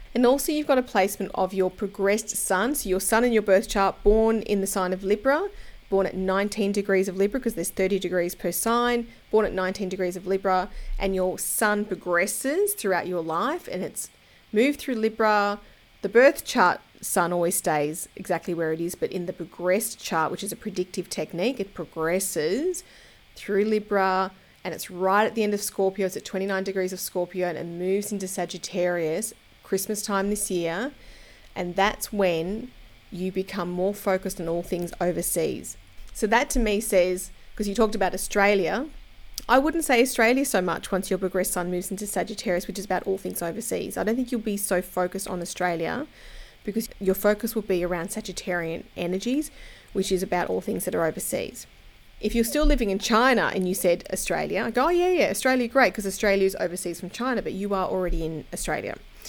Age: 30-49